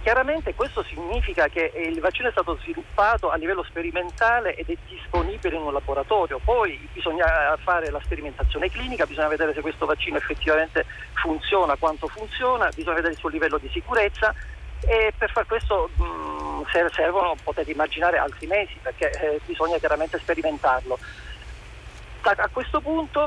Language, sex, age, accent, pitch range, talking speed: Italian, male, 40-59, native, 165-215 Hz, 145 wpm